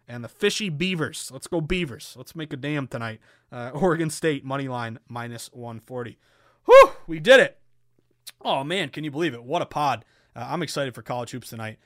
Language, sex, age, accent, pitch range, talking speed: English, male, 30-49, American, 130-170 Hz, 195 wpm